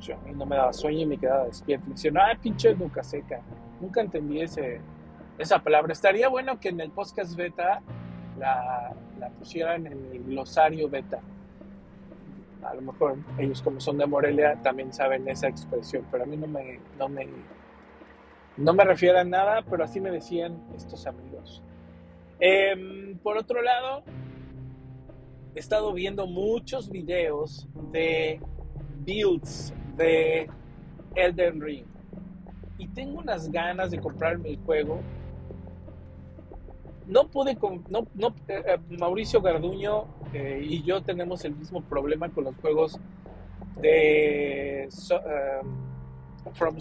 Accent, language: Mexican, Spanish